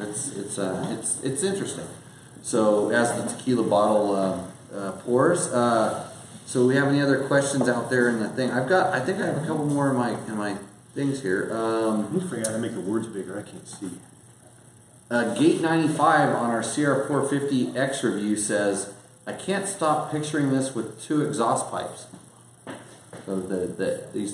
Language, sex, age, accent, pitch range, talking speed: English, male, 30-49, American, 105-140 Hz, 175 wpm